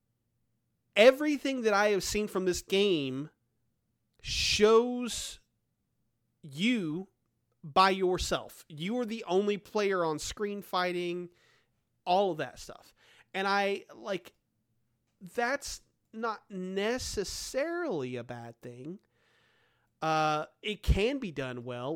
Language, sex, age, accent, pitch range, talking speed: English, male, 30-49, American, 150-210 Hz, 105 wpm